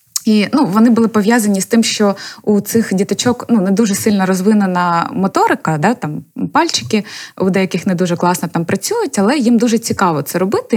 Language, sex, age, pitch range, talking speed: Ukrainian, female, 20-39, 180-235 Hz, 185 wpm